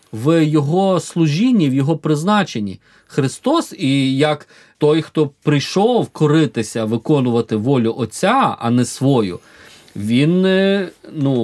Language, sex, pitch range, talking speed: Ukrainian, male, 115-165 Hz, 110 wpm